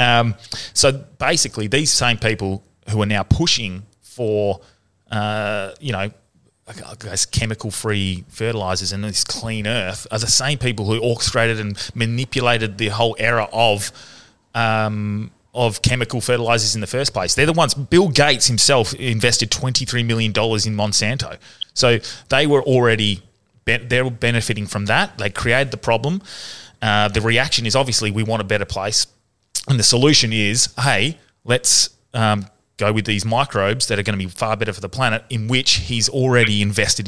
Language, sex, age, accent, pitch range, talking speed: English, male, 20-39, Australian, 105-125 Hz, 165 wpm